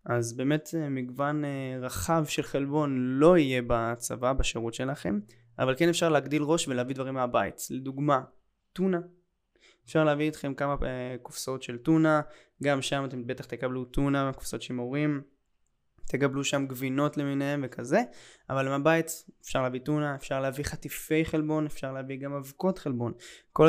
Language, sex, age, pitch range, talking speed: Hebrew, male, 20-39, 125-150 Hz, 145 wpm